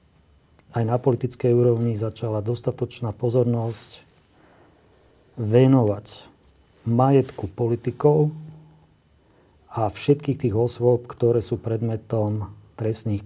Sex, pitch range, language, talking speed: male, 110-125 Hz, Slovak, 80 wpm